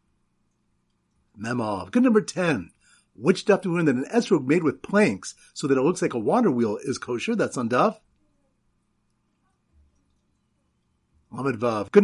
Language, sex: English, male